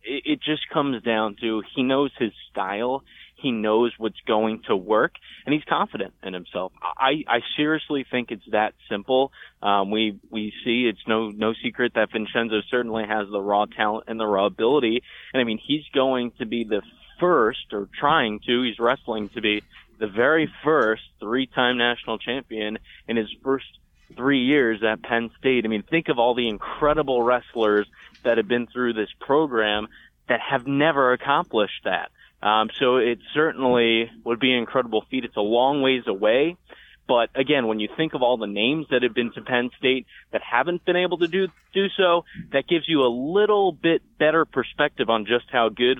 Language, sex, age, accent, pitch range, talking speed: English, male, 20-39, American, 110-135 Hz, 190 wpm